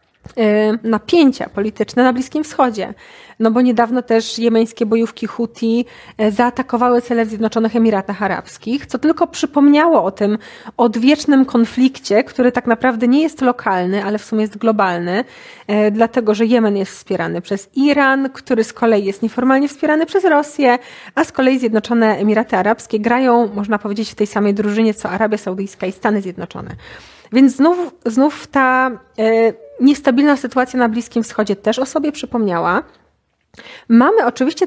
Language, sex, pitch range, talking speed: Polish, female, 220-260 Hz, 145 wpm